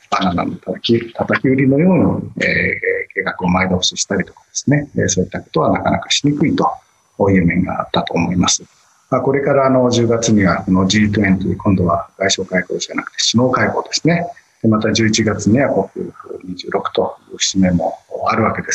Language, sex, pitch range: Japanese, male, 95-130 Hz